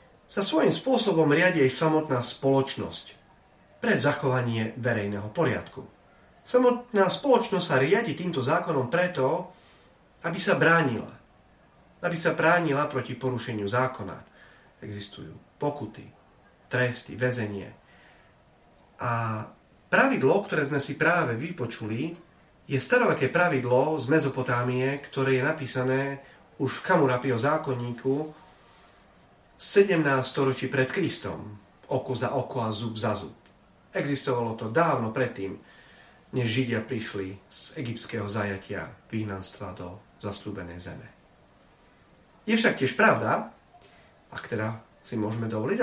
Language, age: Slovak, 40-59